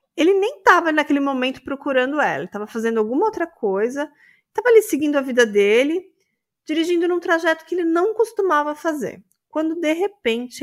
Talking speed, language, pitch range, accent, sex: 165 wpm, Portuguese, 225-315 Hz, Brazilian, female